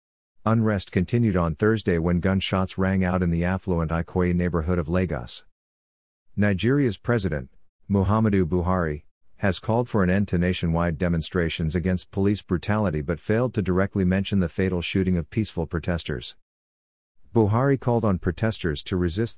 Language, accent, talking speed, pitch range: English, American, 145 wpm, 85-100 Hz